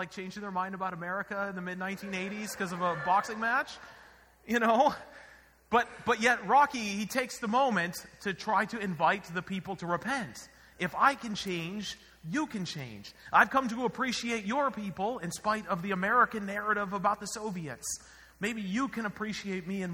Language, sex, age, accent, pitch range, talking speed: English, male, 30-49, American, 175-230 Hz, 180 wpm